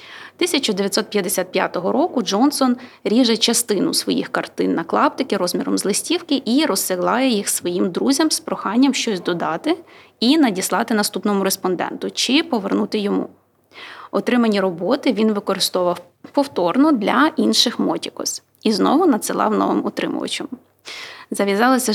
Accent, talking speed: native, 115 wpm